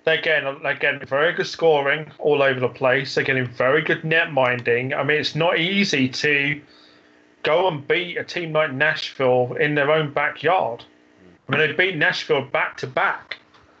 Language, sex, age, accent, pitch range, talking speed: English, male, 30-49, British, 135-165 Hz, 170 wpm